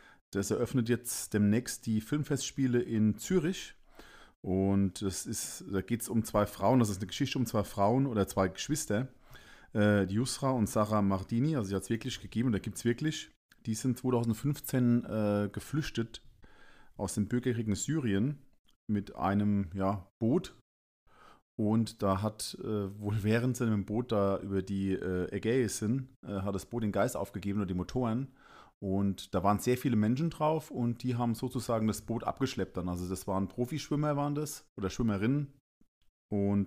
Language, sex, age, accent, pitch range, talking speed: German, male, 40-59, German, 100-125 Hz, 175 wpm